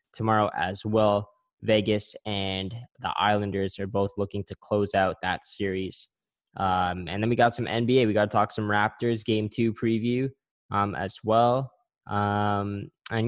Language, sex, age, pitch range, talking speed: English, male, 10-29, 100-120 Hz, 165 wpm